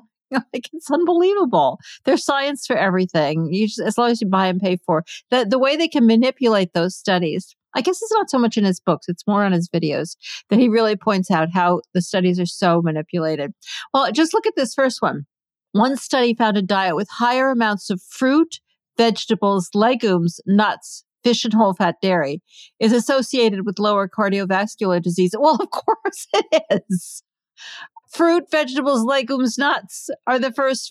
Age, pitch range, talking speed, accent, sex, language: 50-69, 180-250 Hz, 175 wpm, American, female, English